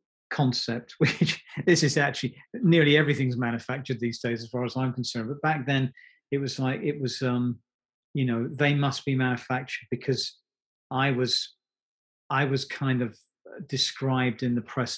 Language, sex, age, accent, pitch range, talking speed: English, male, 40-59, British, 120-140 Hz, 165 wpm